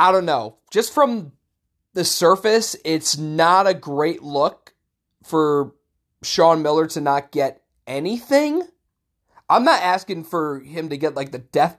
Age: 20-39